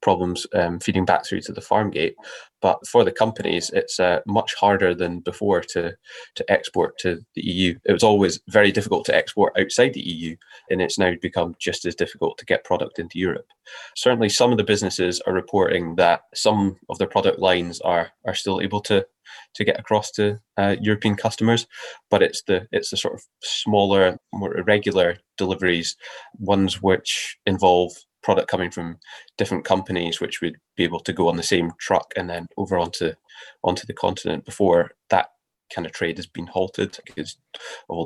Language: English